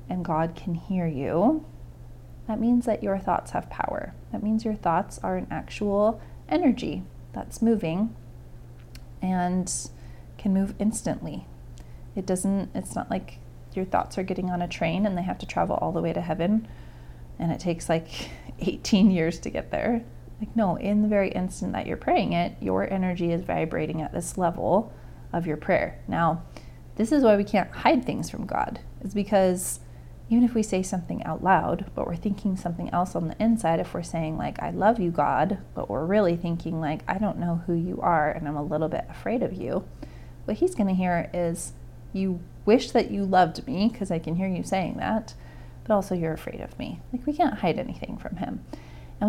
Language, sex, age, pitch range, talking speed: English, female, 30-49, 150-205 Hz, 200 wpm